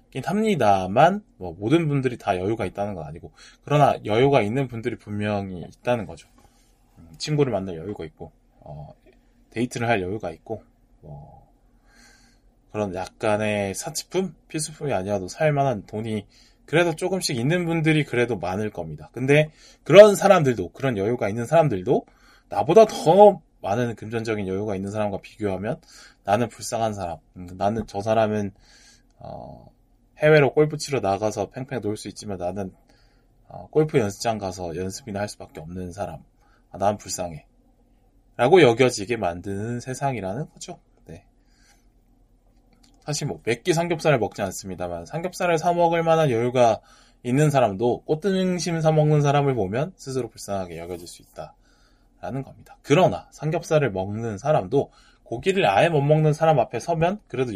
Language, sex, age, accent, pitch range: Korean, male, 20-39, native, 100-155 Hz